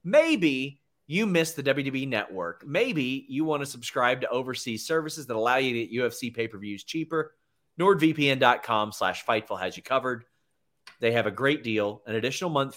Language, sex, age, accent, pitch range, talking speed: English, male, 30-49, American, 105-135 Hz, 170 wpm